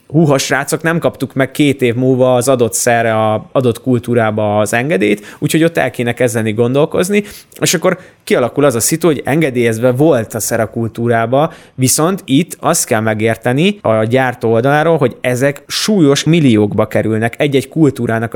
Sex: male